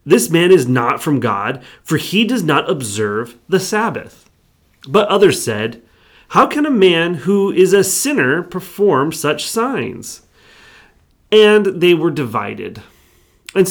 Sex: male